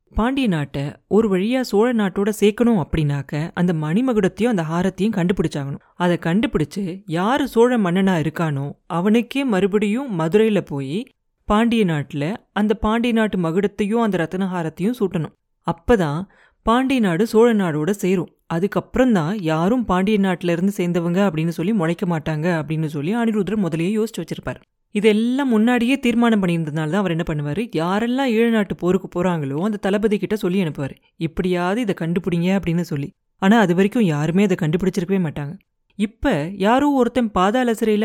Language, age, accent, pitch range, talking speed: Tamil, 30-49, native, 170-225 Hz, 140 wpm